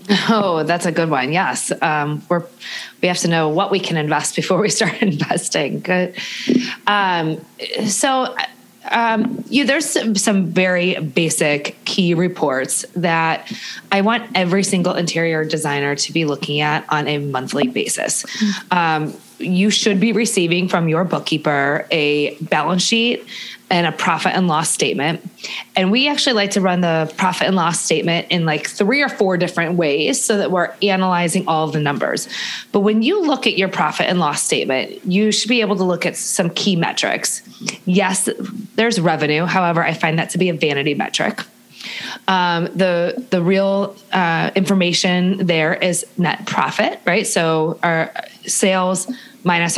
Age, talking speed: 20-39, 165 wpm